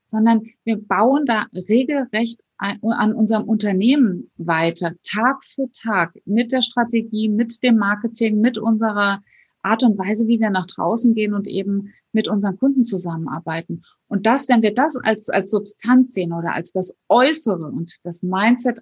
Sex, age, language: female, 30-49, German